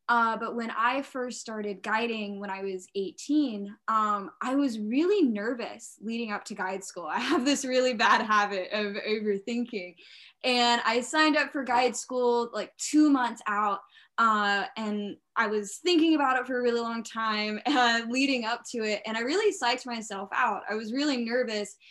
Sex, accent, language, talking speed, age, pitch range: female, American, English, 185 wpm, 10-29, 205-245 Hz